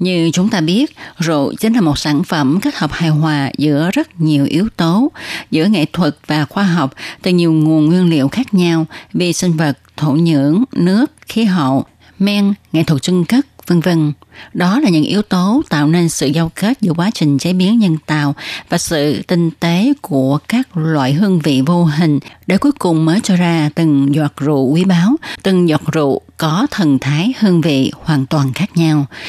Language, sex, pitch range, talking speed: Vietnamese, female, 150-195 Hz, 200 wpm